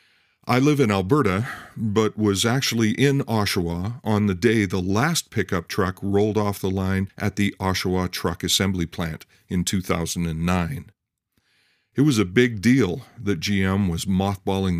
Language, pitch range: English, 95-125 Hz